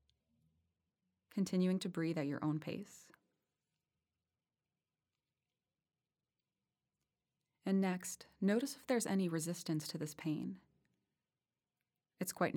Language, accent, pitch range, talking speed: English, American, 150-180 Hz, 90 wpm